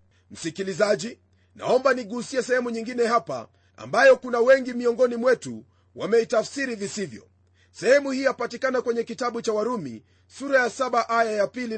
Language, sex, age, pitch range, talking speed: Swahili, male, 40-59, 165-245 Hz, 130 wpm